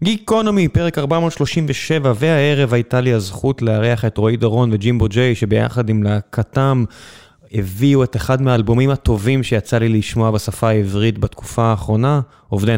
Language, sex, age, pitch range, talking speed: Hebrew, male, 20-39, 110-135 Hz, 135 wpm